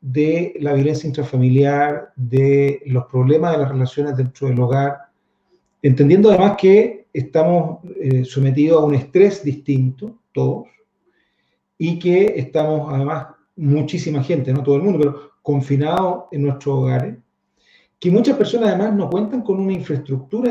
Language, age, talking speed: English, 40-59, 140 wpm